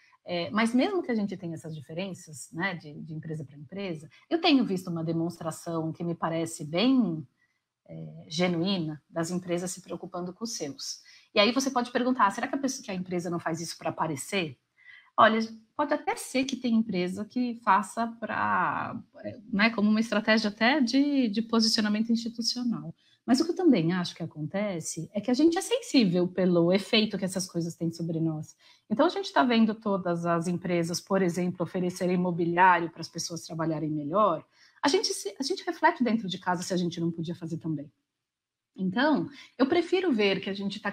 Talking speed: 190 wpm